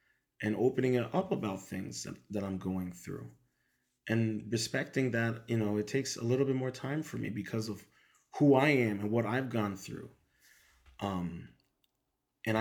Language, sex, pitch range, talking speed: English, male, 110-135 Hz, 175 wpm